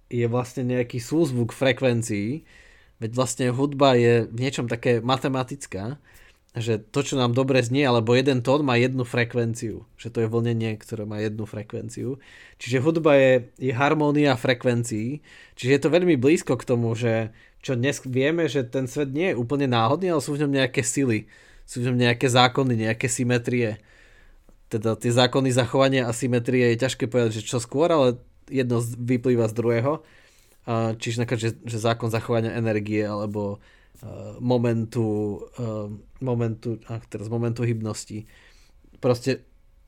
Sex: male